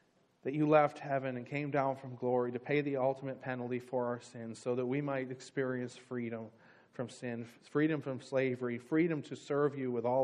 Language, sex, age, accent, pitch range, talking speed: English, male, 40-59, American, 120-140 Hz, 200 wpm